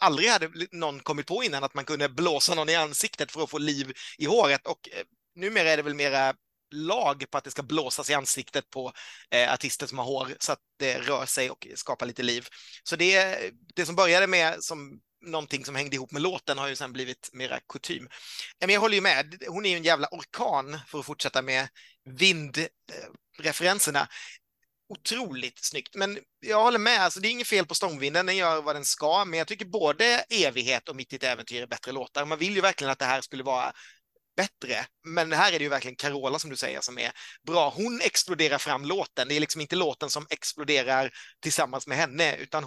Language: Swedish